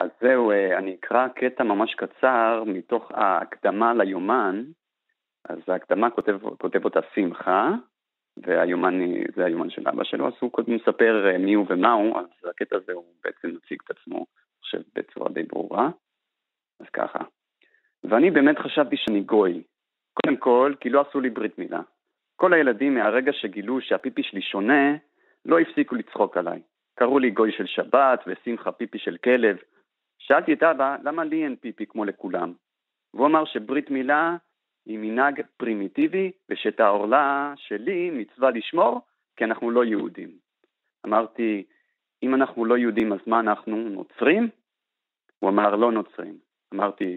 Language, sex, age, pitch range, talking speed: Hebrew, male, 40-59, 105-145 Hz, 145 wpm